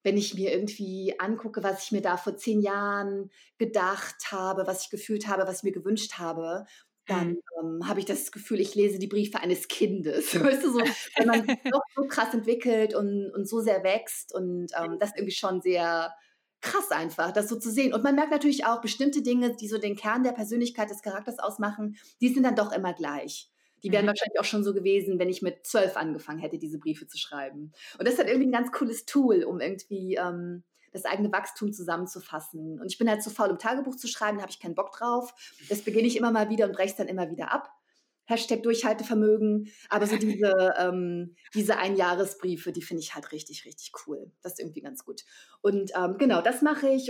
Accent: German